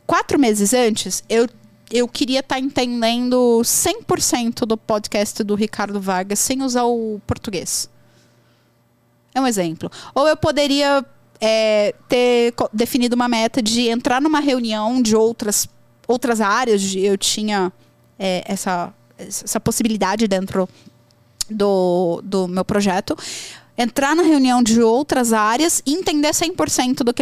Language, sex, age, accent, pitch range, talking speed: Portuguese, female, 20-39, Brazilian, 205-270 Hz, 125 wpm